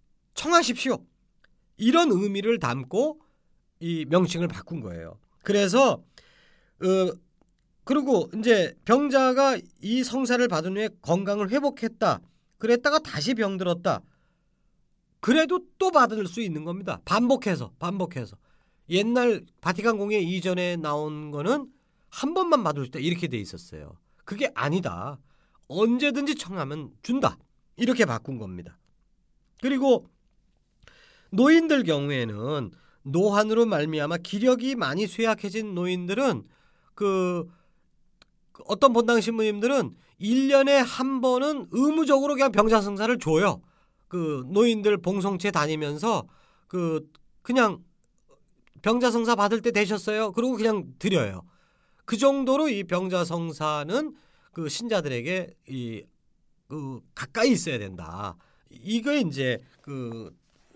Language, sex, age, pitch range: Korean, male, 40-59, 160-245 Hz